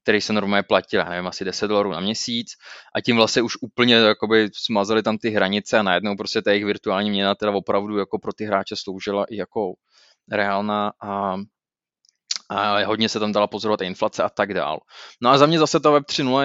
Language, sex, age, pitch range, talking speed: Czech, male, 20-39, 105-125 Hz, 205 wpm